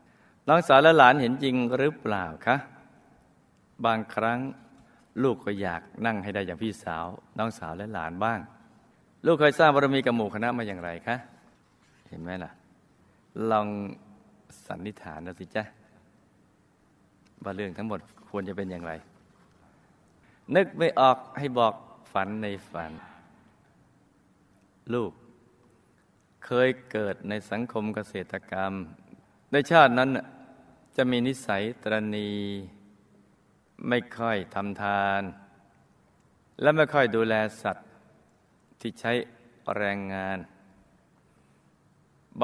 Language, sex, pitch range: Thai, male, 100-125 Hz